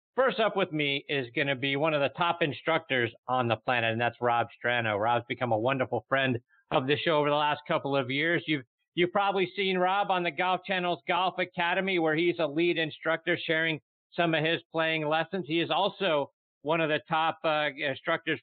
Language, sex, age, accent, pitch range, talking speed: English, male, 50-69, American, 135-175 Hz, 210 wpm